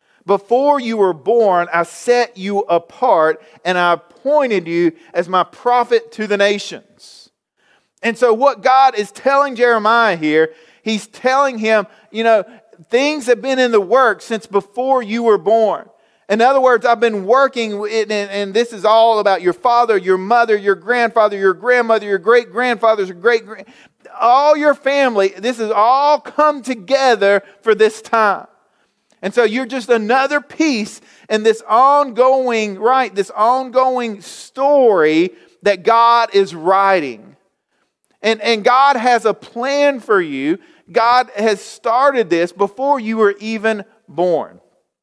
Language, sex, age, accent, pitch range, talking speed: English, male, 40-59, American, 200-250 Hz, 150 wpm